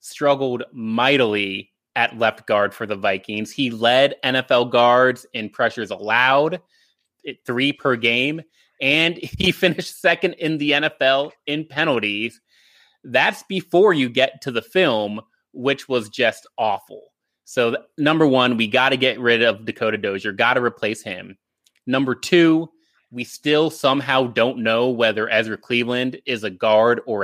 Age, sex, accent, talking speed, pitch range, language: 30-49, male, American, 150 wpm, 120-145 Hz, English